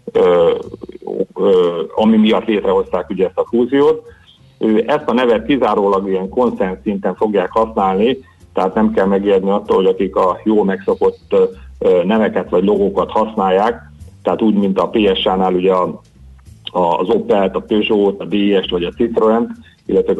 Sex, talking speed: male, 145 wpm